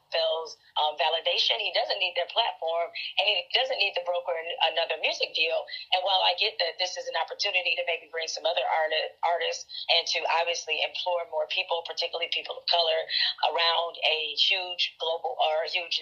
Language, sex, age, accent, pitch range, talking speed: English, female, 30-49, American, 165-195 Hz, 185 wpm